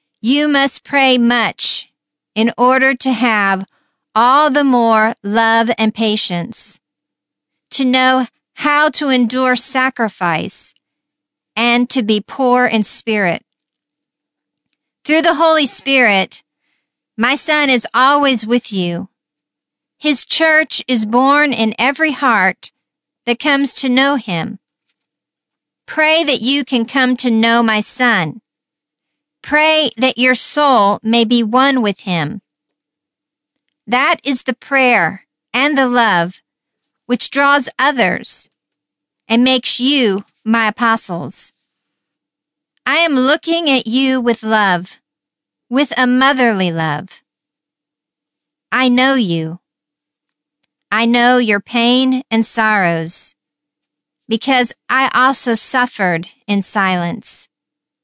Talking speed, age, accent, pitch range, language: 110 wpm, 50-69, American, 220-275 Hz, English